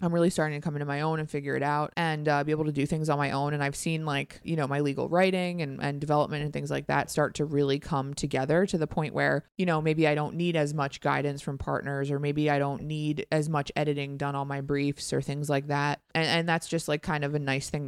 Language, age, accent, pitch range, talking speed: English, 20-39, American, 140-165 Hz, 280 wpm